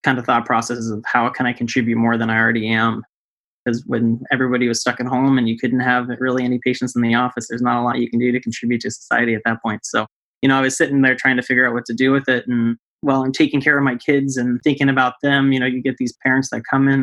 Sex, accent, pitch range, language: male, American, 120-135 Hz, English